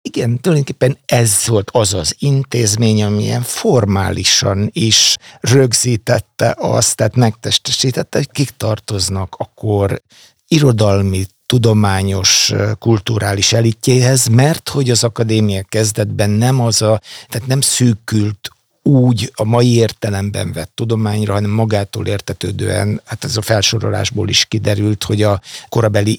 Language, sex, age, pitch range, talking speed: Hungarian, male, 60-79, 105-120 Hz, 120 wpm